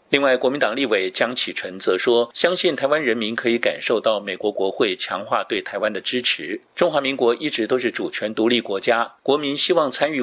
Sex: male